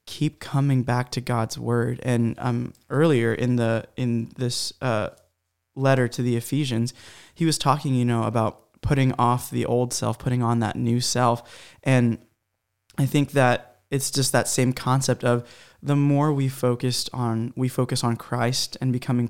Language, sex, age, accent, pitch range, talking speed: English, male, 20-39, American, 120-135 Hz, 170 wpm